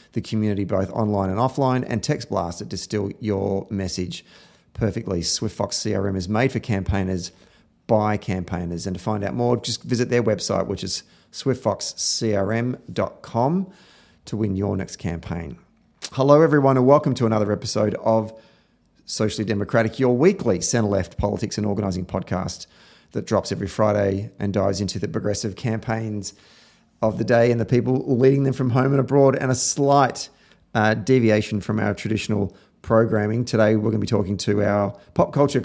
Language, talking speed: English, 165 wpm